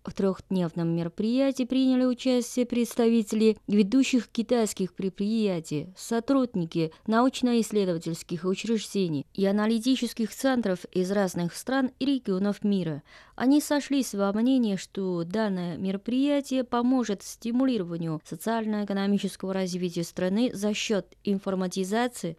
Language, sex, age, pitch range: Russian, female, 20-39, 180-235 Hz